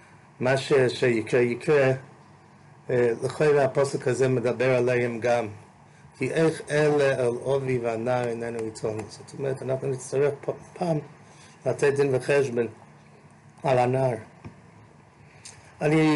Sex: male